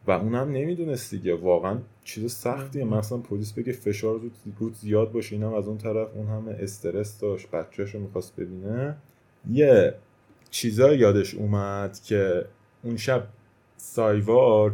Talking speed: 140 wpm